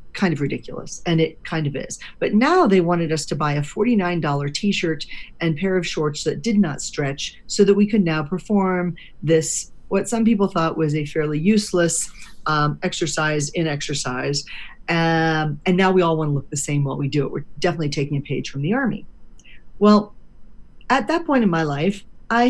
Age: 40-59